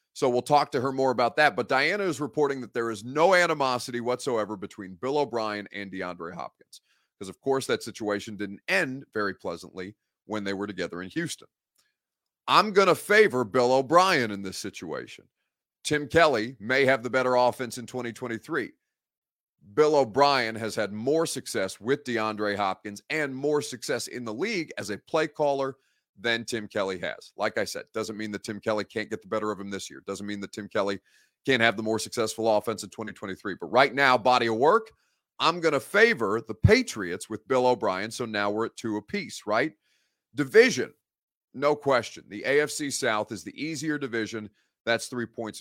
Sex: male